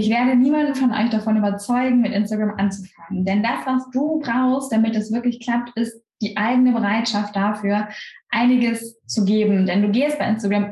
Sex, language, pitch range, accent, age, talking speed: female, German, 205-250 Hz, German, 10-29, 180 wpm